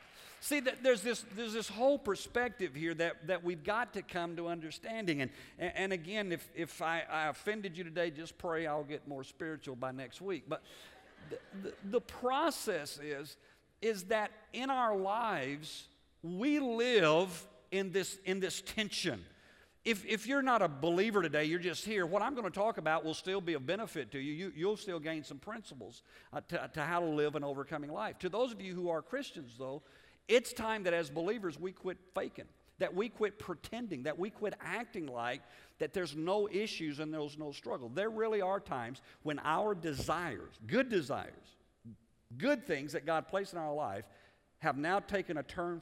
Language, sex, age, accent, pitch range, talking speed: English, male, 50-69, American, 145-205 Hz, 190 wpm